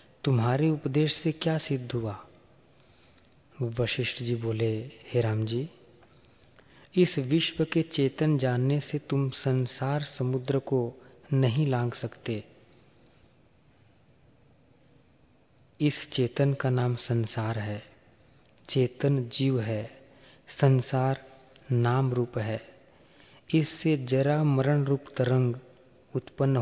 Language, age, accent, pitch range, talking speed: Hindi, 40-59, native, 120-140 Hz, 100 wpm